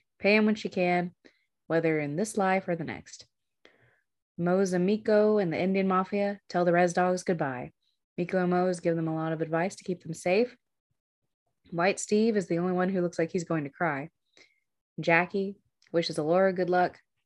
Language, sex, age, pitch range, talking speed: English, female, 20-39, 165-185 Hz, 190 wpm